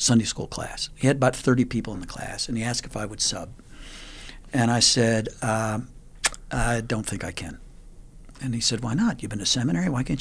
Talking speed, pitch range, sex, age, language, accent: 225 wpm, 110-145 Hz, male, 60-79, English, American